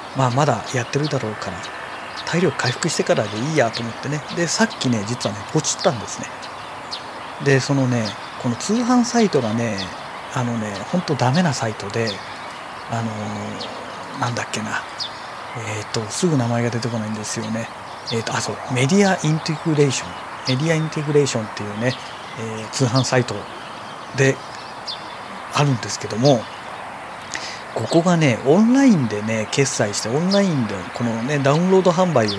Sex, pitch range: male, 115-165 Hz